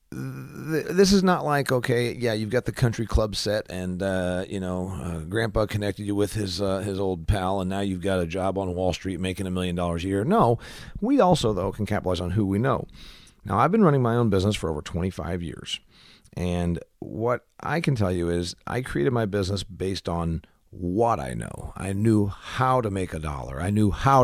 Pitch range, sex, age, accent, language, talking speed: 90-120 Hz, male, 40-59, American, English, 215 wpm